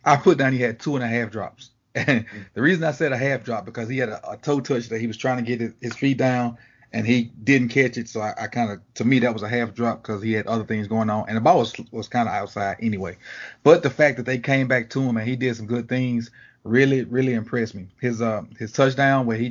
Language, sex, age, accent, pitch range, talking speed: English, male, 30-49, American, 115-135 Hz, 285 wpm